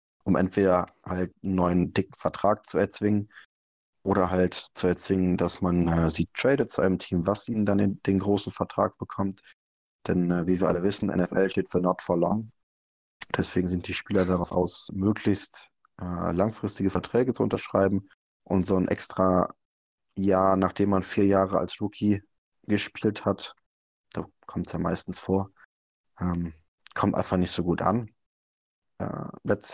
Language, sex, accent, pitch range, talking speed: German, male, German, 90-100 Hz, 165 wpm